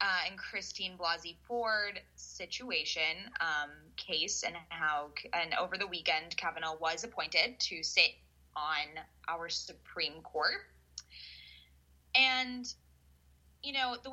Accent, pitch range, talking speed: American, 150-210 Hz, 115 wpm